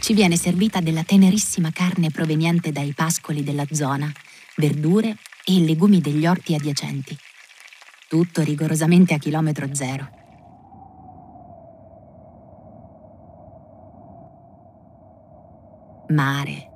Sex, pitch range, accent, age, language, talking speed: female, 155-190 Hz, native, 30-49, Italian, 80 wpm